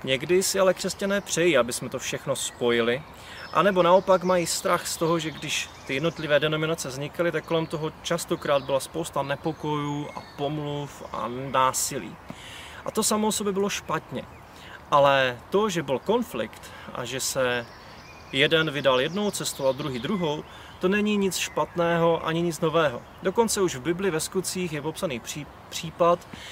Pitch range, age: 135-175 Hz, 30-49